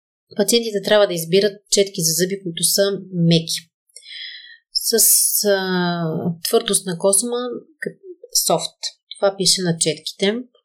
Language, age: Bulgarian, 30-49